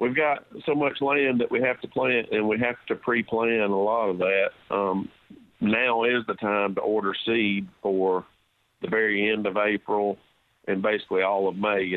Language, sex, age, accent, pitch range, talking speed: English, male, 50-69, American, 100-115 Hz, 195 wpm